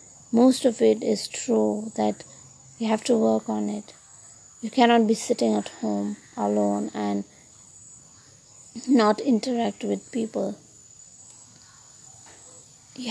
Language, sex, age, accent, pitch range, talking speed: English, female, 20-39, Indian, 150-235 Hz, 115 wpm